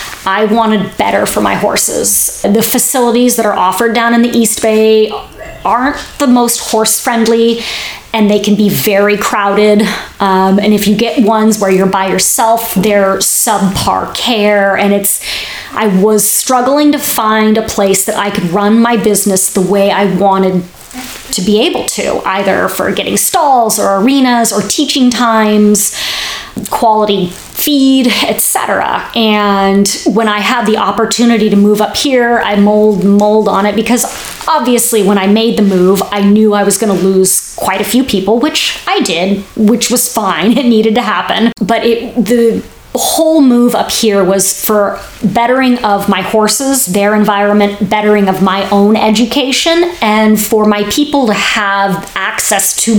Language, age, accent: English, 20-39, American